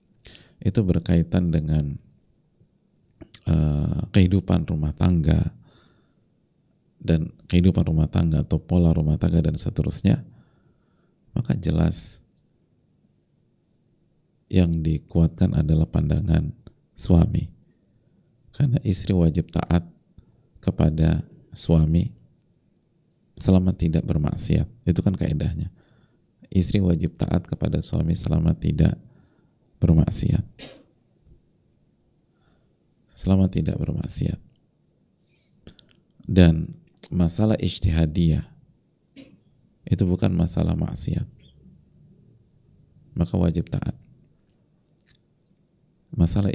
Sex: male